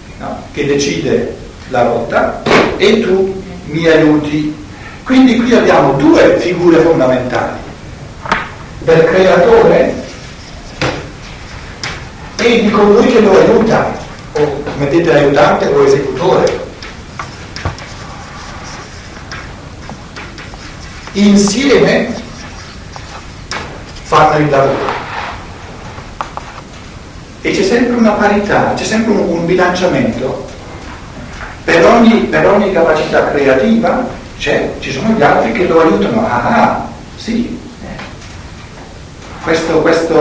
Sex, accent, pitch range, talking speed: male, native, 145-225 Hz, 95 wpm